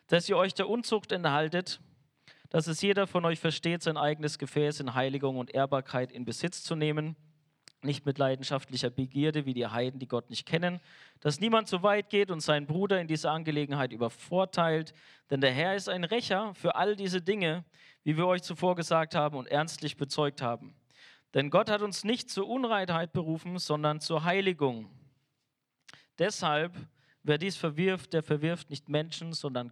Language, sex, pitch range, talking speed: German, male, 140-175 Hz, 175 wpm